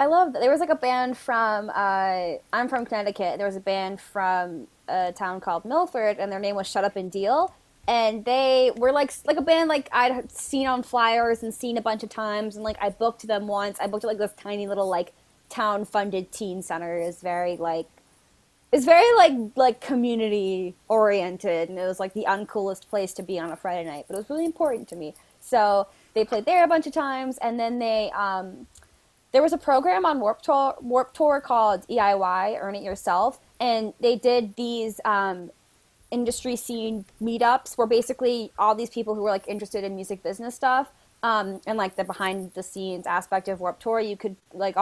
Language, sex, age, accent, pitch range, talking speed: English, female, 20-39, American, 195-250 Hz, 205 wpm